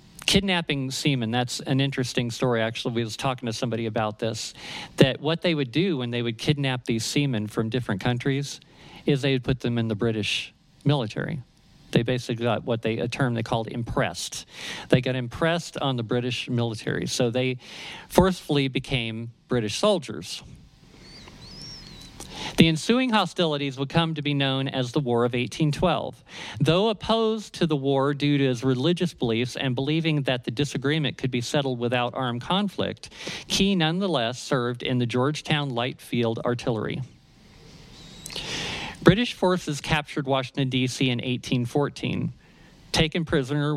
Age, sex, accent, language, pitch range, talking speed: 50-69, male, American, English, 120-155 Hz, 155 wpm